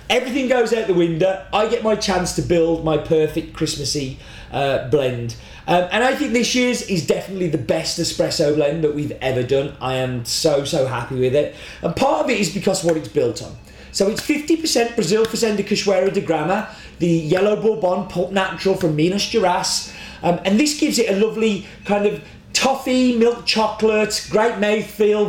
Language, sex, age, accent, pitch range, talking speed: English, male, 30-49, British, 175-215 Hz, 190 wpm